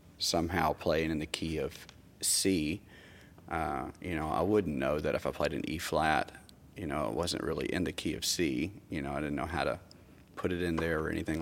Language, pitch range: English, 80-95 Hz